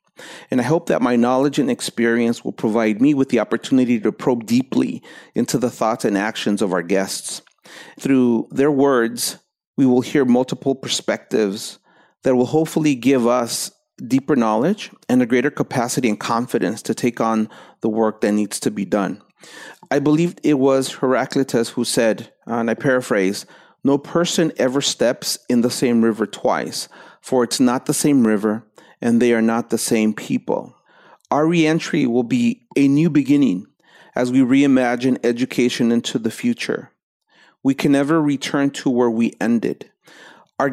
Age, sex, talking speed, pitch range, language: 40-59, male, 165 wpm, 115-140 Hz, English